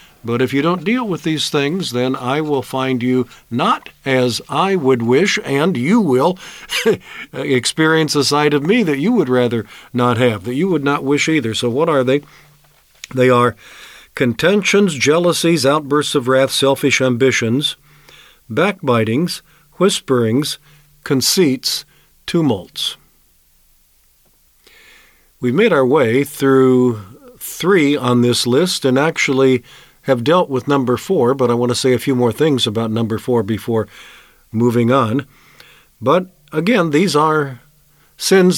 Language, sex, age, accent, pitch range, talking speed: English, male, 50-69, American, 125-160 Hz, 140 wpm